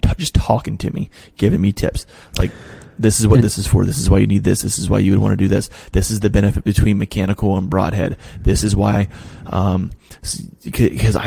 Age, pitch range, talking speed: 30-49, 95-110 Hz, 225 wpm